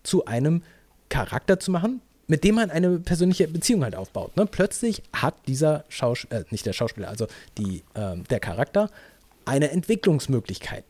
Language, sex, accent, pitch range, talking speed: English, male, German, 125-180 Hz, 160 wpm